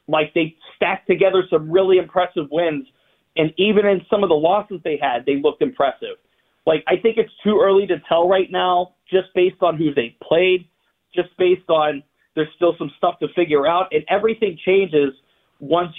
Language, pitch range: English, 160-195 Hz